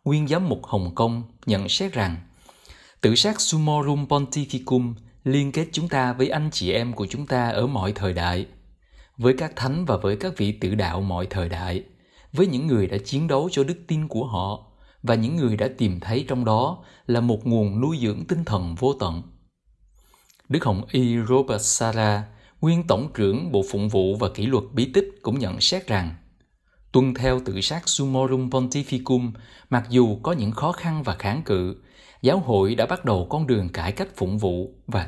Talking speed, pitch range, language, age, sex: 195 wpm, 105-135 Hz, Vietnamese, 20-39, male